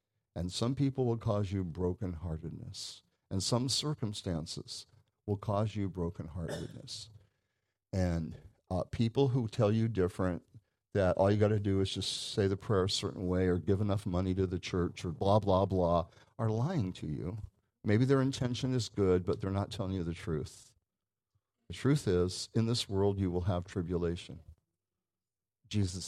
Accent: American